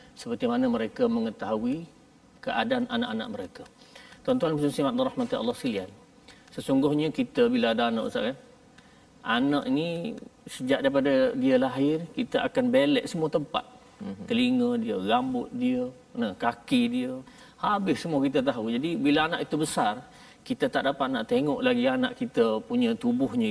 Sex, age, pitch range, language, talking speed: male, 40-59, 235-250 Hz, Malayalam, 150 wpm